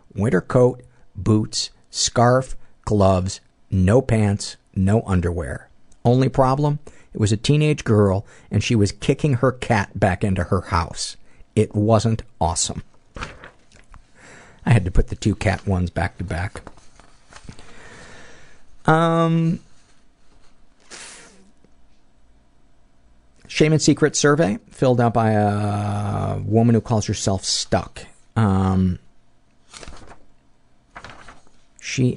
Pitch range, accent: 95-115 Hz, American